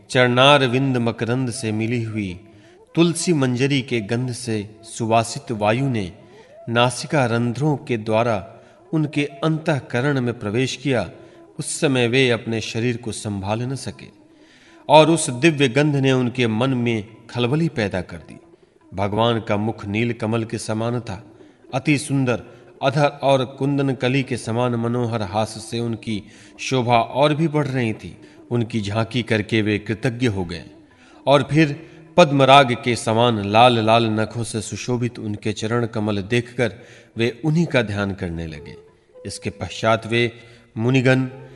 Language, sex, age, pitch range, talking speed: Hindi, male, 30-49, 110-130 Hz, 145 wpm